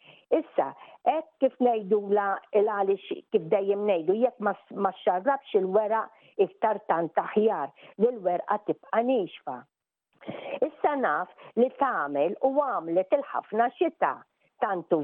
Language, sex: English, female